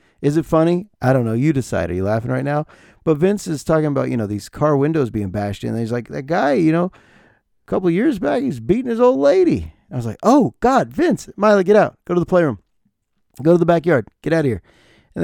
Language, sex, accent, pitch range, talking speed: English, male, American, 105-155 Hz, 255 wpm